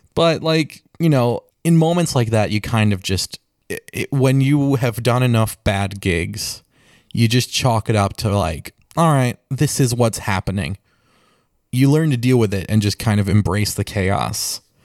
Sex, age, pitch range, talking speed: male, 20-39, 105-125 Hz, 180 wpm